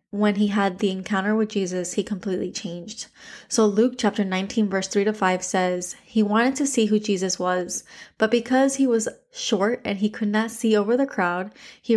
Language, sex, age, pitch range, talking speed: English, female, 20-39, 195-235 Hz, 200 wpm